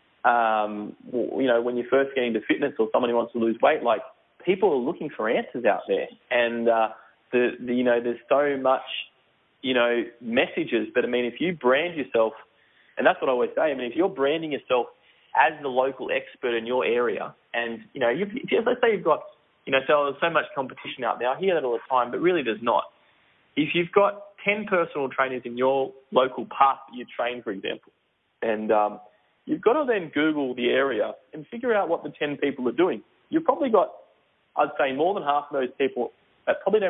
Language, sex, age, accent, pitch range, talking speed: English, male, 20-39, Australian, 120-175 Hz, 220 wpm